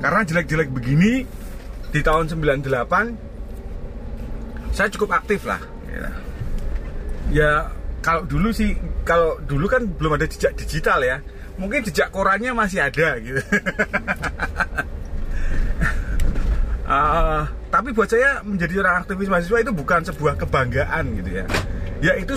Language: Indonesian